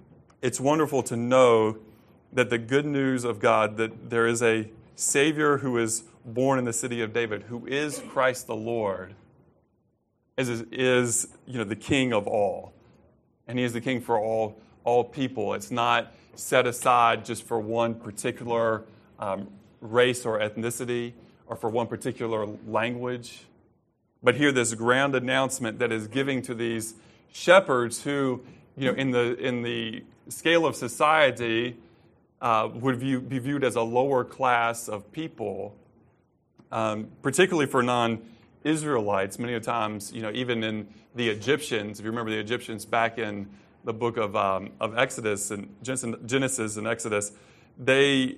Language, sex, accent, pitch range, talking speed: English, male, American, 110-125 Hz, 155 wpm